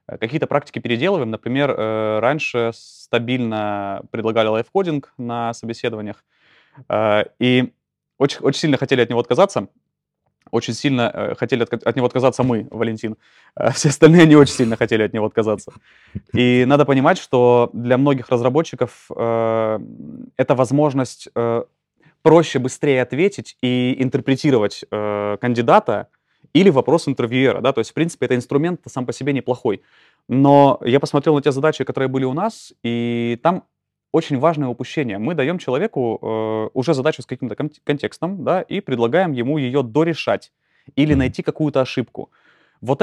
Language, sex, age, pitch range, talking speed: Russian, male, 20-39, 115-150 Hz, 140 wpm